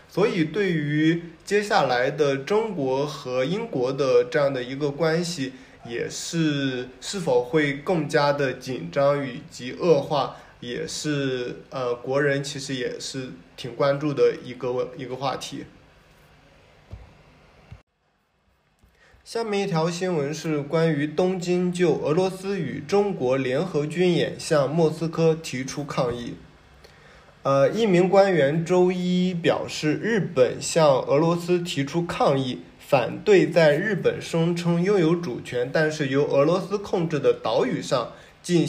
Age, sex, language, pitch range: 20-39, male, Chinese, 140-180 Hz